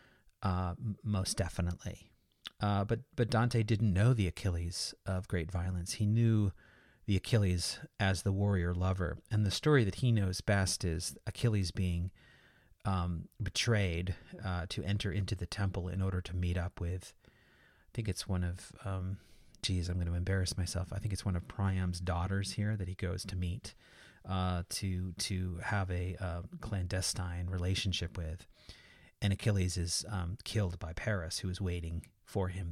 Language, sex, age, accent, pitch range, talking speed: English, male, 30-49, American, 90-105 Hz, 170 wpm